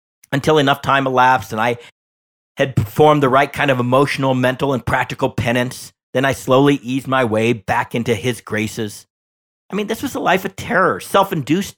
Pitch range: 110-145 Hz